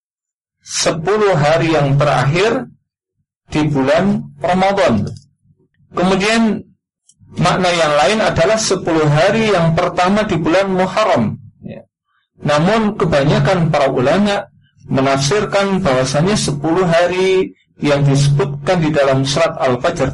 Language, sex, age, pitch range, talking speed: Indonesian, male, 40-59, 140-185 Hz, 100 wpm